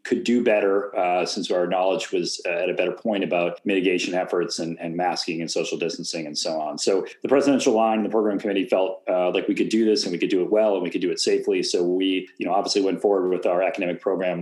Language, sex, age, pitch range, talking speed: English, male, 30-49, 90-105 Hz, 255 wpm